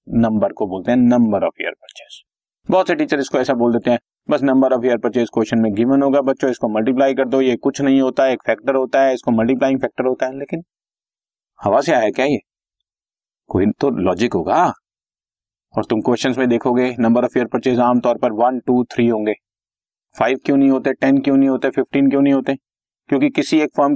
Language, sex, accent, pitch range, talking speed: Hindi, male, native, 120-140 Hz, 105 wpm